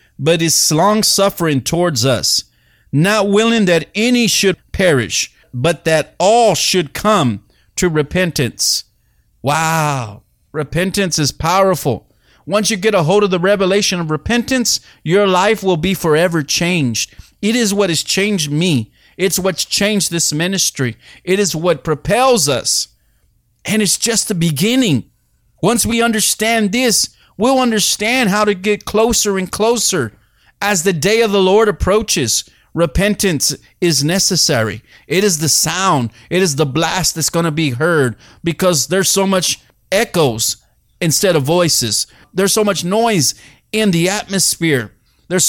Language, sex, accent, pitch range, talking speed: English, male, American, 150-205 Hz, 145 wpm